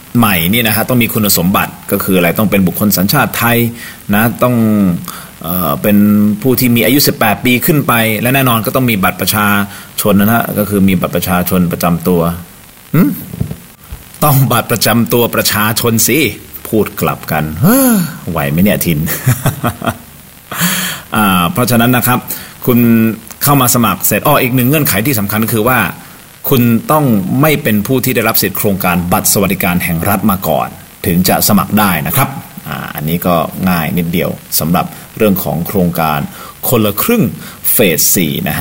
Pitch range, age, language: 90-120 Hz, 30-49, Thai